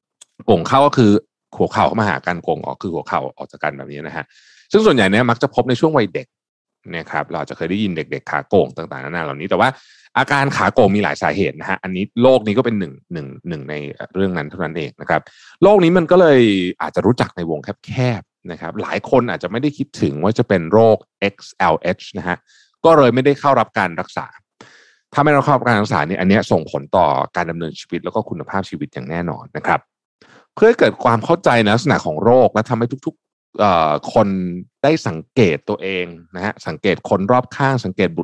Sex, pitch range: male, 90-125 Hz